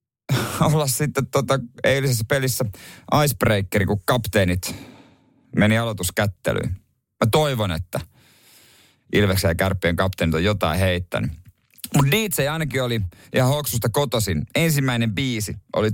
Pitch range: 95-135 Hz